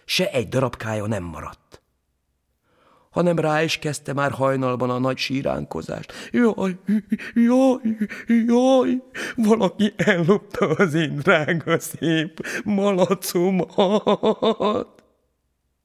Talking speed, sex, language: 90 wpm, male, Hungarian